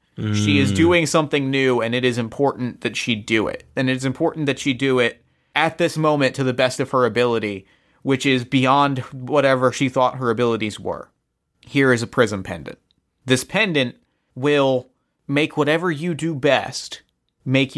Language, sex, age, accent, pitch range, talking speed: English, male, 30-49, American, 125-145 Hz, 175 wpm